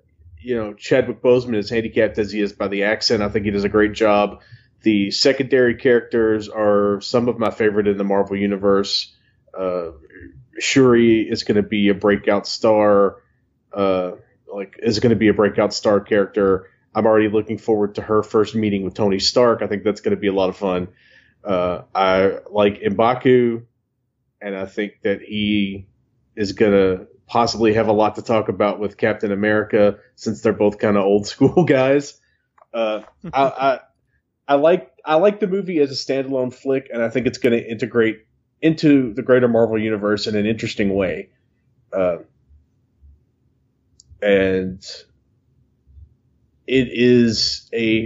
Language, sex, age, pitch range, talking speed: English, male, 30-49, 100-125 Hz, 170 wpm